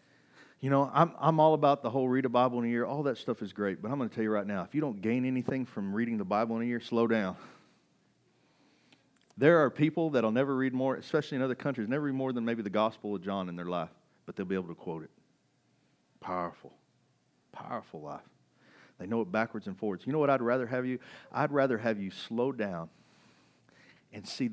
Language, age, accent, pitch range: English, 40-59, American, 105-150 Hz